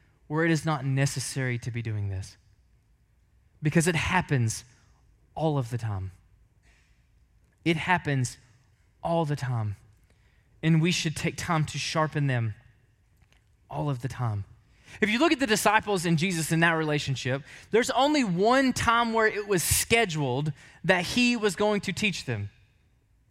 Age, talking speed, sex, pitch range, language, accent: 20-39, 150 wpm, male, 110-180 Hz, English, American